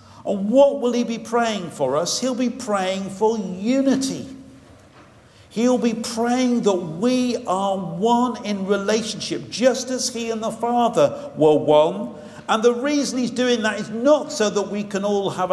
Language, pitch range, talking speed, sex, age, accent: English, 140-225 Hz, 170 wpm, male, 50-69, British